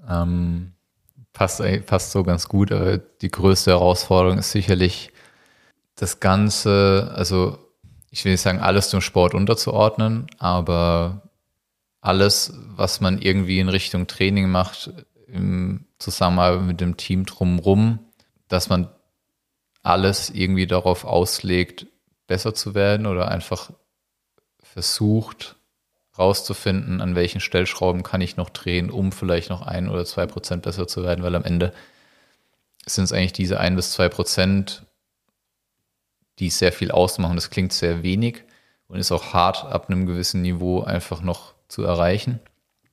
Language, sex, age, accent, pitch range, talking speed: German, male, 30-49, German, 90-100 Hz, 135 wpm